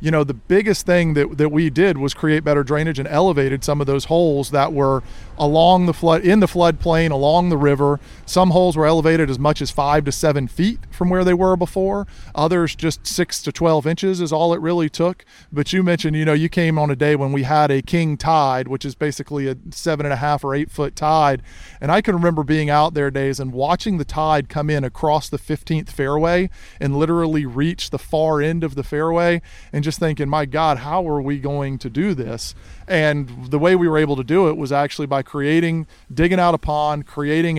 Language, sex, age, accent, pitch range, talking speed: English, male, 40-59, American, 140-165 Hz, 225 wpm